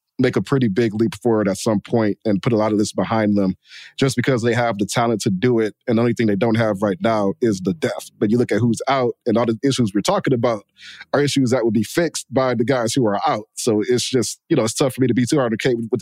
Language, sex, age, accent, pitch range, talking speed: English, male, 20-39, American, 110-135 Hz, 295 wpm